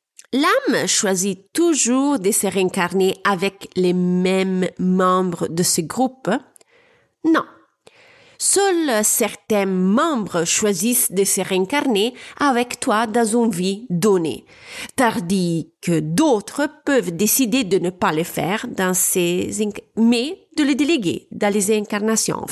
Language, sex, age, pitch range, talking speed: French, female, 30-49, 185-265 Hz, 125 wpm